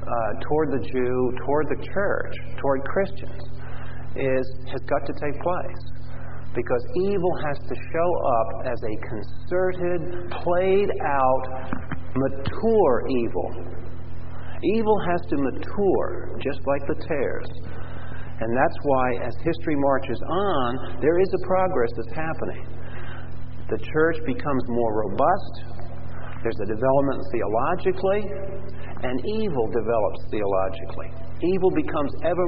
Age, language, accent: 50-69, English, American